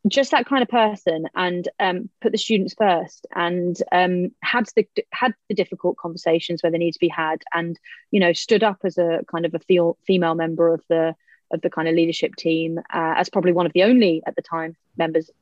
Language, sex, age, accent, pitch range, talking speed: English, female, 30-49, British, 170-215 Hz, 220 wpm